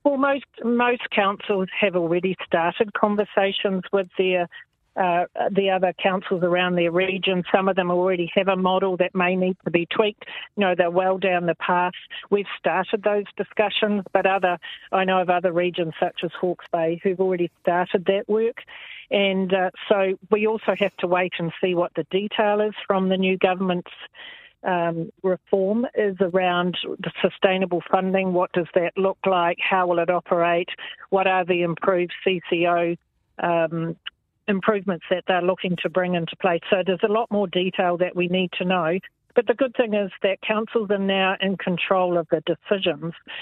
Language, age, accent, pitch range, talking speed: English, 50-69, Australian, 175-200 Hz, 180 wpm